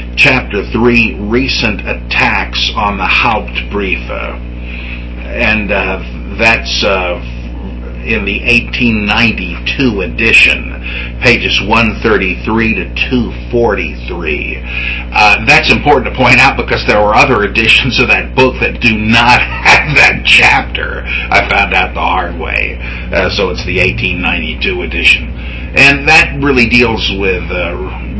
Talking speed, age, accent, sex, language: 120 wpm, 50-69, American, male, English